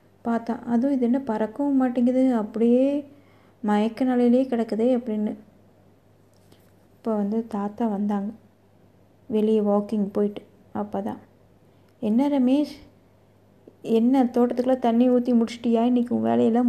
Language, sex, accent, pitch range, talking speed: Tamil, female, native, 215-255 Hz, 105 wpm